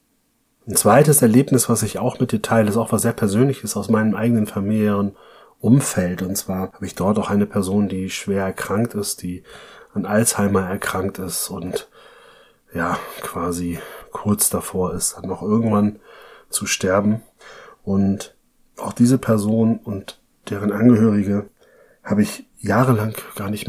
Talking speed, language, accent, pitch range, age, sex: 145 wpm, German, German, 95-115 Hz, 30-49, male